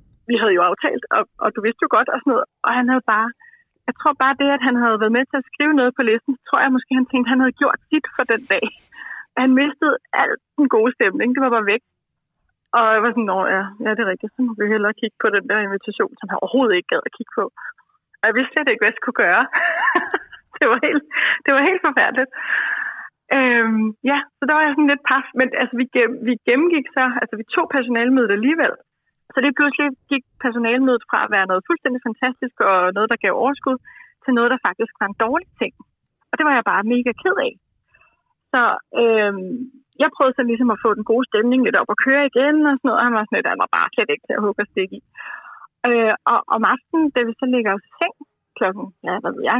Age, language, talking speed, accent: 30-49, Danish, 240 wpm, native